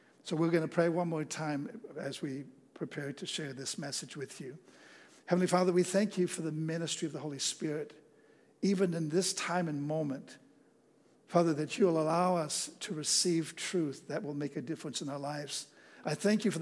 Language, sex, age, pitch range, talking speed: English, male, 60-79, 150-180 Hz, 200 wpm